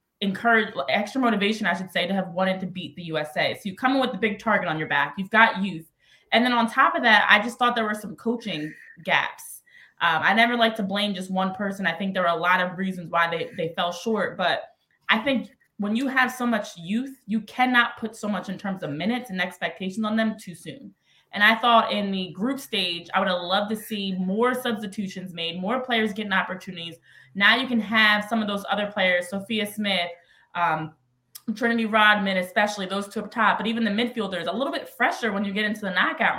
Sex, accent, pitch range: female, American, 185-235 Hz